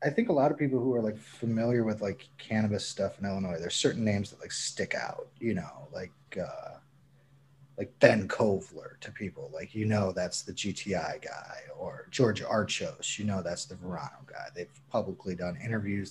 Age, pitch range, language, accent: 30-49, 115-145 Hz, English, American